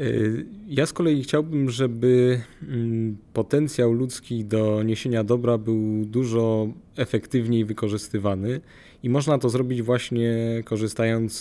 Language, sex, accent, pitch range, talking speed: Polish, male, native, 110-125 Hz, 105 wpm